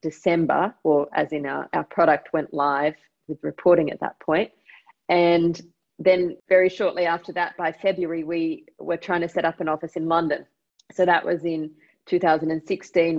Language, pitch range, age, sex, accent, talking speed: English, 160-185 Hz, 30-49, female, Australian, 170 wpm